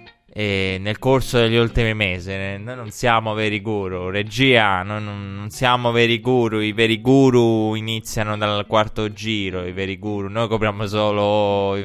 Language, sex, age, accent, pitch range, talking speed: Italian, male, 20-39, native, 100-115 Hz, 150 wpm